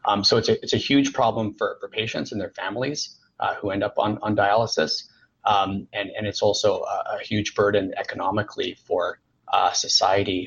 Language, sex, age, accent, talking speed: English, male, 30-49, American, 195 wpm